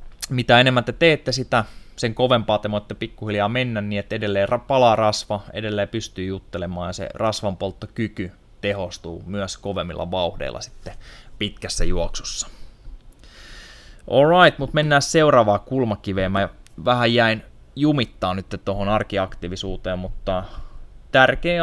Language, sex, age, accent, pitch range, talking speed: Finnish, male, 20-39, native, 95-115 Hz, 120 wpm